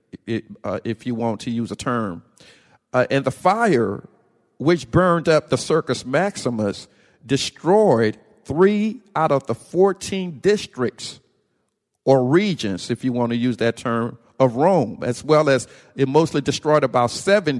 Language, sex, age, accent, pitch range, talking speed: English, male, 50-69, American, 120-160 Hz, 155 wpm